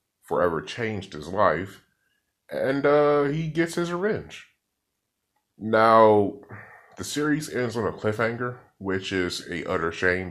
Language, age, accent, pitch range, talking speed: English, 30-49, American, 85-110 Hz, 130 wpm